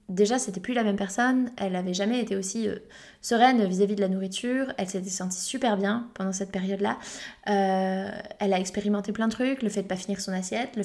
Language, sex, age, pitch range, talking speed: French, female, 20-39, 200-245 Hz, 225 wpm